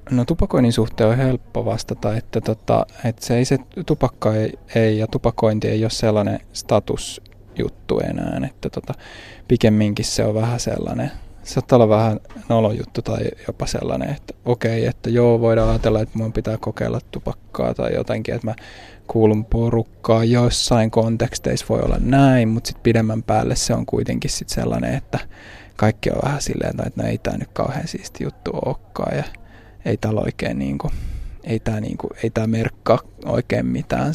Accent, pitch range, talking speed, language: native, 105-120 Hz, 160 wpm, Finnish